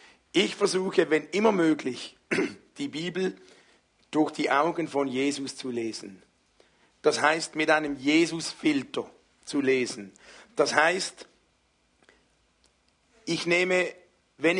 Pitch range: 145-185 Hz